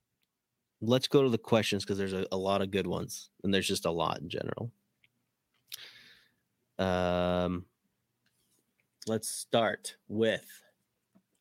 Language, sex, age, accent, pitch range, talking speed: English, male, 30-49, American, 95-120 Hz, 125 wpm